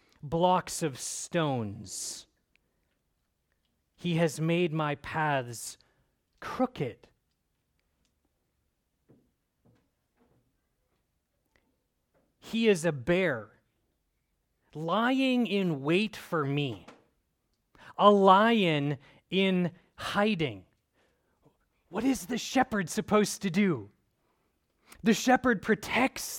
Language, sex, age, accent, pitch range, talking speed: English, male, 30-49, American, 120-205 Hz, 75 wpm